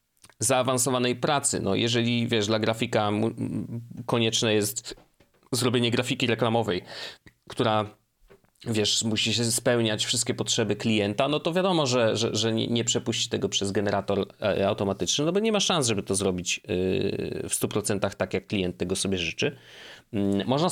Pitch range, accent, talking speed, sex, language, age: 100-130 Hz, native, 140 wpm, male, Polish, 30-49